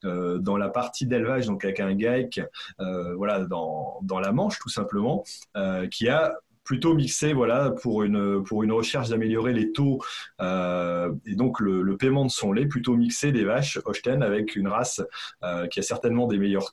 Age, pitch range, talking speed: 20-39, 100-135 Hz, 195 wpm